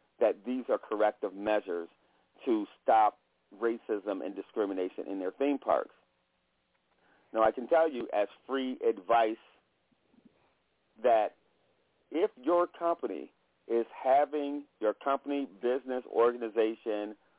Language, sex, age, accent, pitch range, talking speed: English, male, 40-59, American, 105-135 Hz, 110 wpm